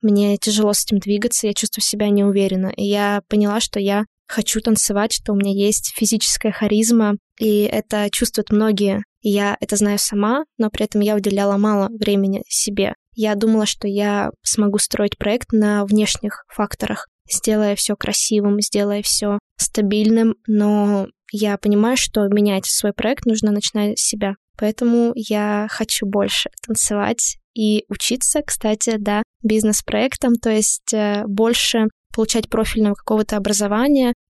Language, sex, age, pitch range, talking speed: Russian, female, 20-39, 205-230 Hz, 145 wpm